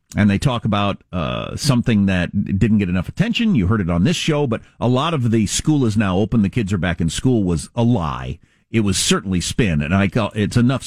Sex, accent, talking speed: male, American, 245 wpm